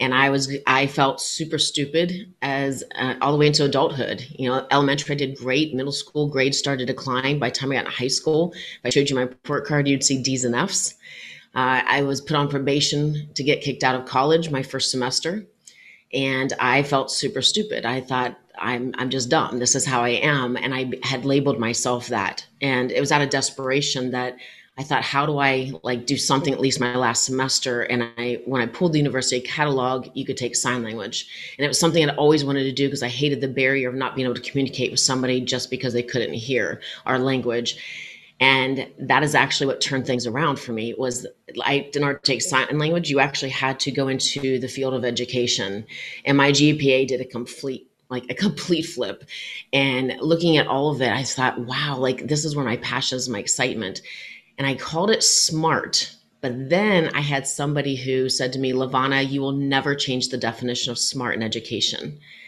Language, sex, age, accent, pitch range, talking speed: English, female, 30-49, American, 125-145 Hz, 215 wpm